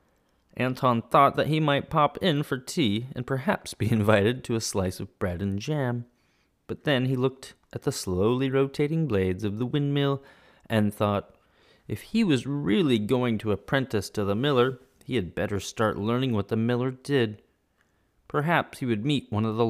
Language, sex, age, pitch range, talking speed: English, male, 30-49, 105-145 Hz, 185 wpm